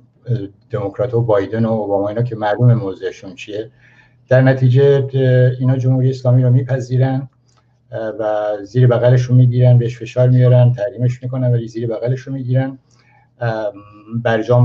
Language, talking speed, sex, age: Persian, 125 wpm, male, 60-79